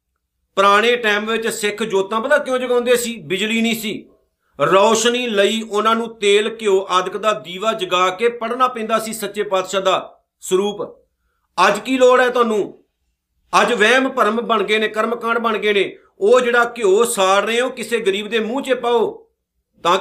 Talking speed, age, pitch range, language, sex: 170 wpm, 50-69, 205-245 Hz, Punjabi, male